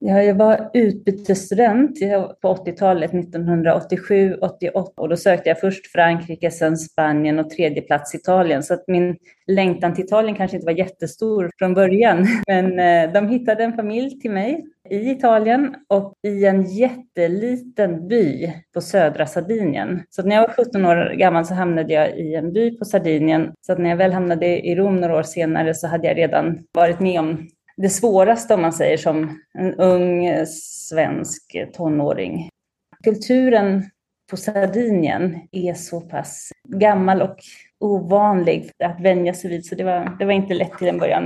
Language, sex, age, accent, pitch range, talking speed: Swedish, female, 30-49, native, 170-200 Hz, 170 wpm